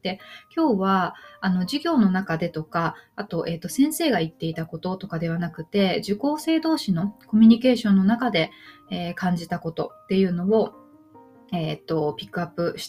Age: 20-39